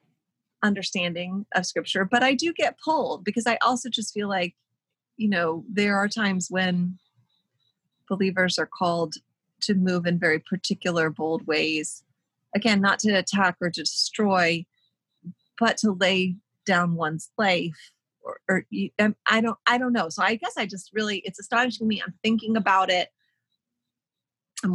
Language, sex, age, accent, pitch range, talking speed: English, female, 30-49, American, 175-215 Hz, 160 wpm